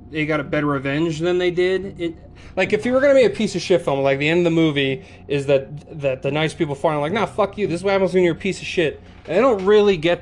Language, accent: English, American